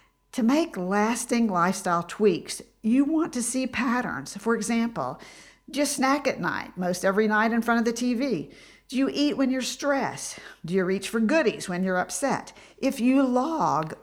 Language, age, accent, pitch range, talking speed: English, 50-69, American, 180-235 Hz, 175 wpm